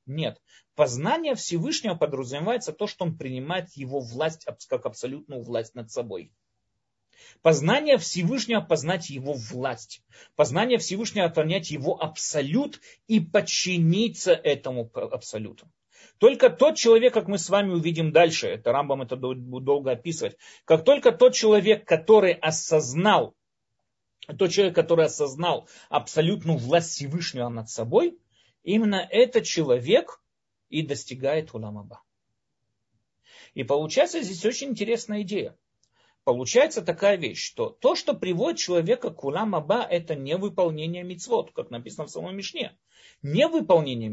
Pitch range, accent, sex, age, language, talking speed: 135-215 Hz, native, male, 30-49, Russian, 125 wpm